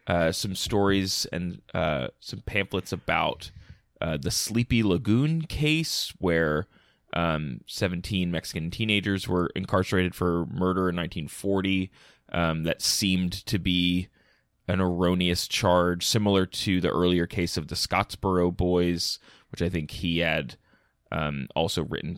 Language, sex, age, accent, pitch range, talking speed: English, male, 20-39, American, 85-115 Hz, 135 wpm